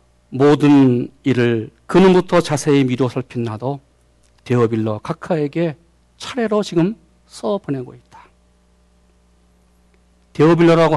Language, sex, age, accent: Korean, male, 40-59, native